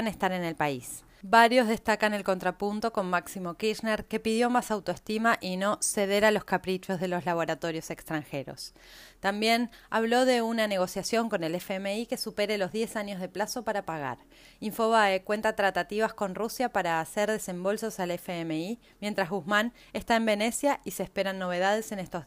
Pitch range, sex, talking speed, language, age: 180-220 Hz, female, 170 wpm, Spanish, 20-39